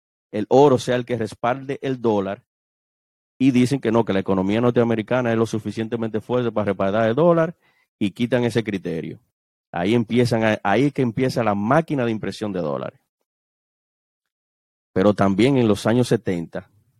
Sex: male